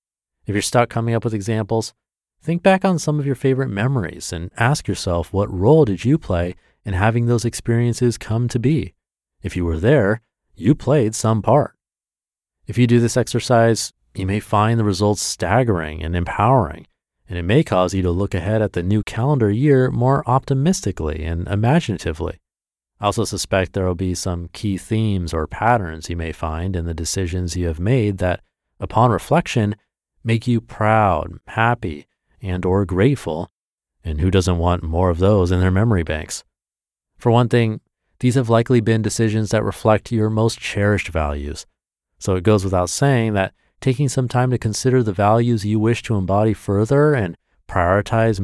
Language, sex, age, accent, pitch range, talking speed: English, male, 30-49, American, 90-120 Hz, 175 wpm